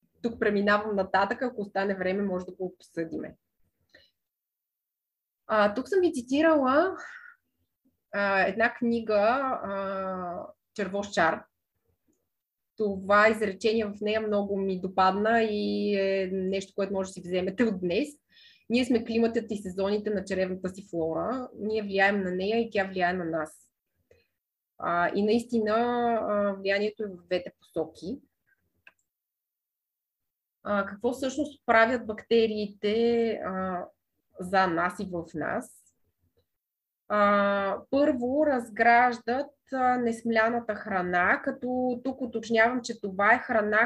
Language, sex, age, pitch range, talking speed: Bulgarian, female, 20-39, 195-240 Hz, 115 wpm